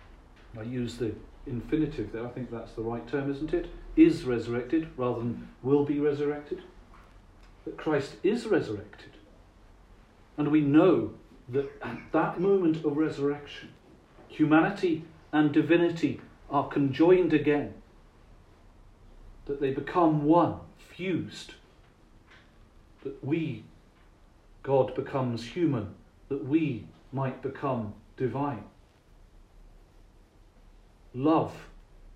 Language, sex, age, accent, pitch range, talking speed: English, male, 40-59, British, 100-145 Hz, 105 wpm